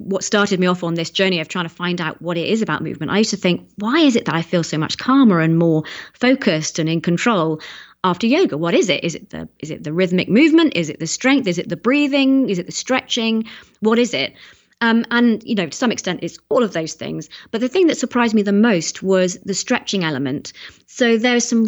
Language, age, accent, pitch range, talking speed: English, 30-49, British, 170-225 Hz, 250 wpm